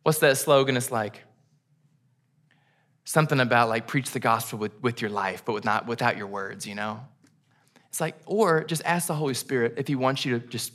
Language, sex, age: English, male, 20-39